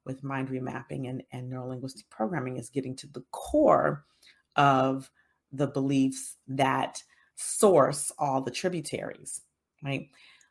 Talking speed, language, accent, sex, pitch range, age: 120 wpm, English, American, female, 130-165 Hz, 40-59